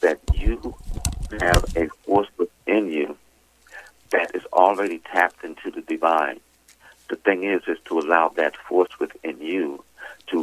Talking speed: 145 wpm